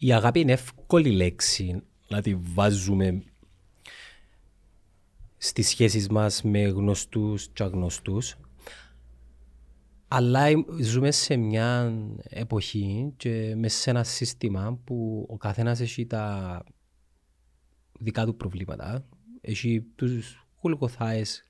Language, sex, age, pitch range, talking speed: Greek, male, 30-49, 100-125 Hz, 100 wpm